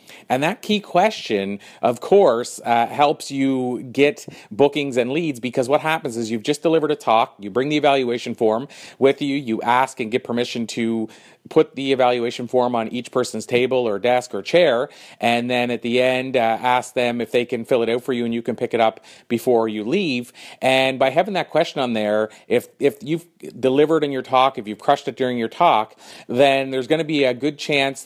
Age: 40-59